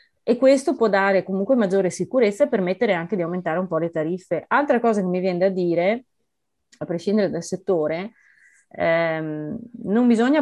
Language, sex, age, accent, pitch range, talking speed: Italian, female, 30-49, native, 170-210 Hz, 175 wpm